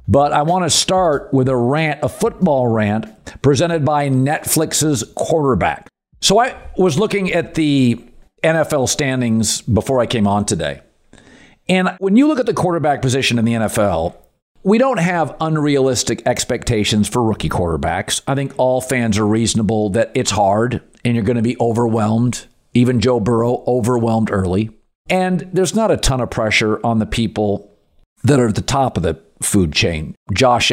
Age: 50-69